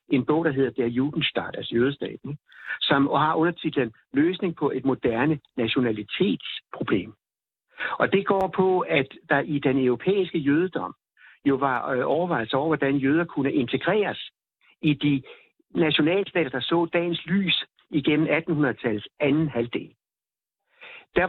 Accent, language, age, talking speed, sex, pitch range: native, Danish, 60-79, 130 wpm, male, 130-170 Hz